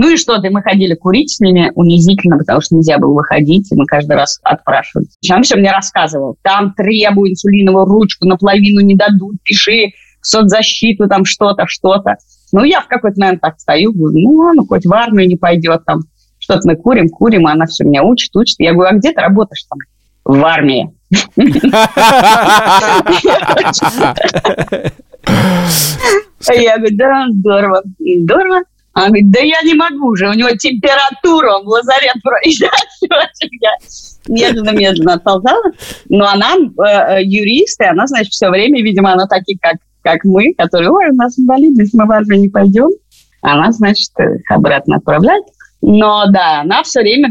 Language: Russian